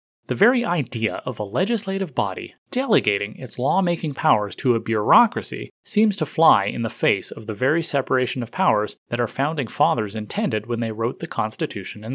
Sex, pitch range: male, 115-175 Hz